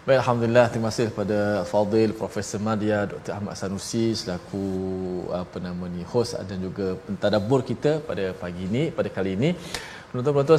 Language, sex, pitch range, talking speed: Malayalam, male, 105-130 Hz, 145 wpm